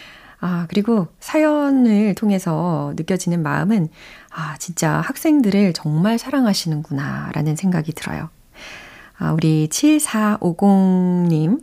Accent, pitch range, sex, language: native, 160-250 Hz, female, Korean